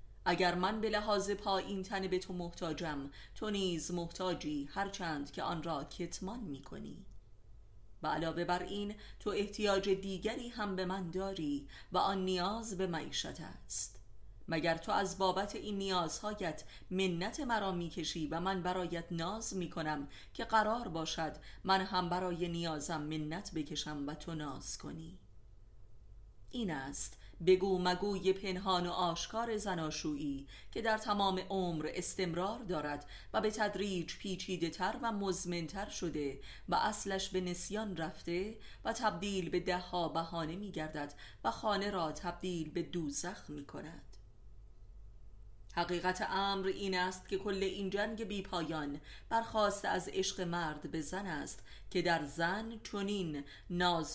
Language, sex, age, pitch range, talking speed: Persian, female, 30-49, 150-195 Hz, 140 wpm